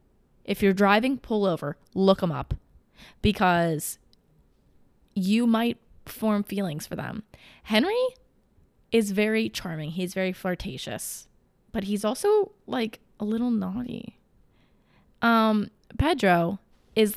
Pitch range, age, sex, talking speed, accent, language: 175-215 Hz, 20-39, female, 110 wpm, American, English